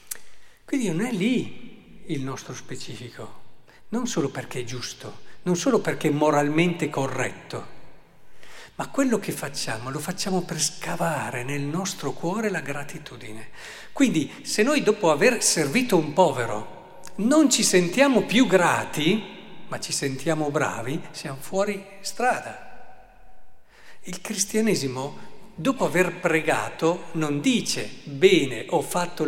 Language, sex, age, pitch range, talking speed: Italian, male, 50-69, 145-195 Hz, 125 wpm